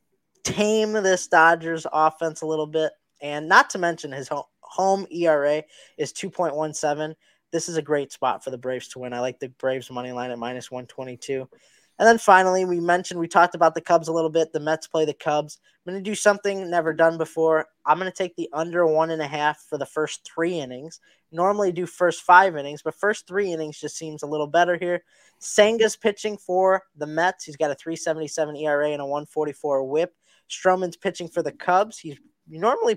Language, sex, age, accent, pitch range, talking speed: English, male, 20-39, American, 155-190 Hz, 205 wpm